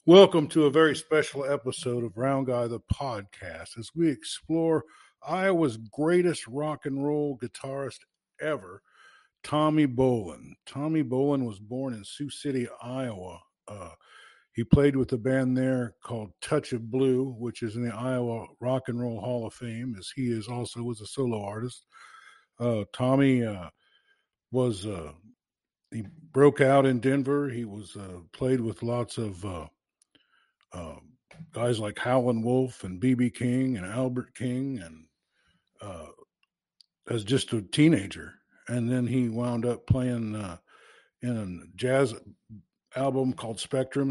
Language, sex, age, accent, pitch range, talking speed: English, male, 50-69, American, 115-140 Hz, 150 wpm